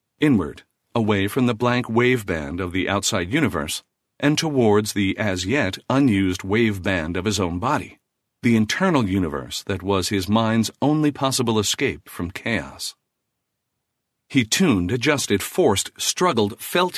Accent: American